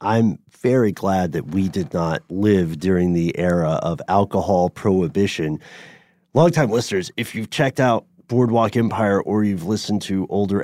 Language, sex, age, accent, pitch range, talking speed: English, male, 30-49, American, 95-125 Hz, 150 wpm